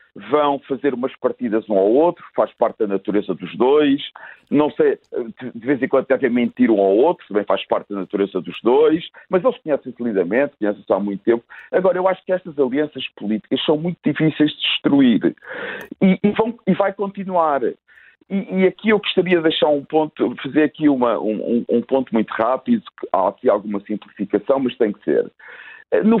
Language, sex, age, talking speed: Portuguese, male, 50-69, 190 wpm